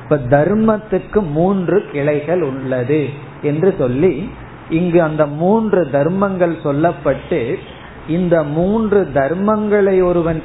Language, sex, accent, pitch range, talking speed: Tamil, male, native, 145-185 Hz, 75 wpm